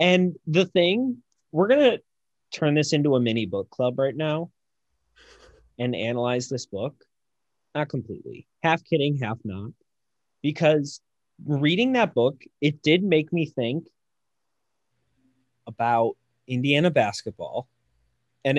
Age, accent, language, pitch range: 30-49, American, English, 120-150 Hz